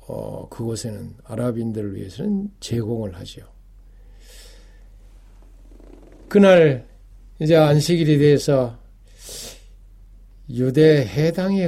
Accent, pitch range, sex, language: native, 100-145 Hz, male, Korean